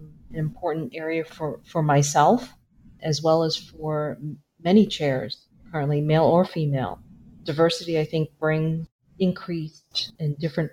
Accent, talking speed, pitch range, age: American, 130 wpm, 150-175 Hz, 40-59